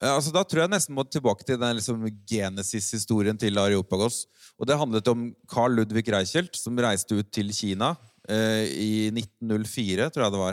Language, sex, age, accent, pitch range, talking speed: Swedish, male, 30-49, native, 100-120 Hz, 180 wpm